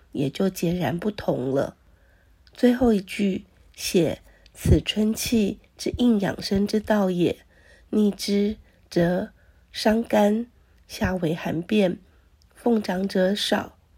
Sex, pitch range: female, 180-220 Hz